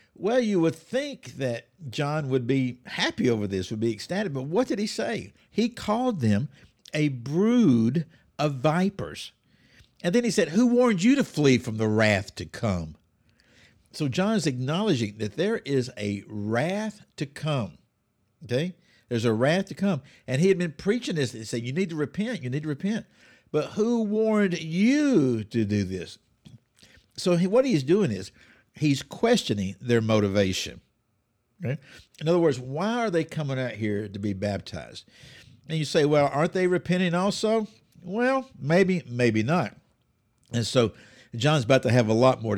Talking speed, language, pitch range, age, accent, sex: 175 wpm, English, 115-180 Hz, 60-79, American, male